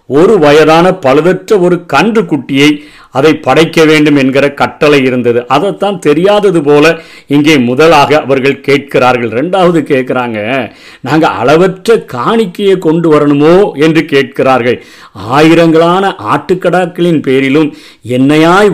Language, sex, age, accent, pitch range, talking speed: Tamil, male, 50-69, native, 150-190 Hz, 100 wpm